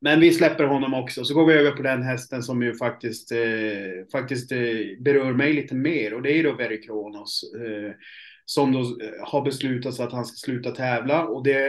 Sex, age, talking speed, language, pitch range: male, 30-49, 195 wpm, Swedish, 120-140 Hz